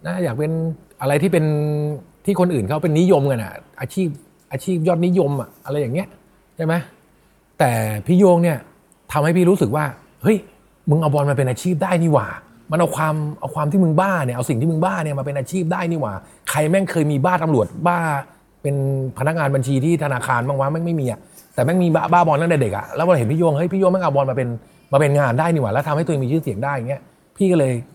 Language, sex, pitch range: Thai, male, 135-180 Hz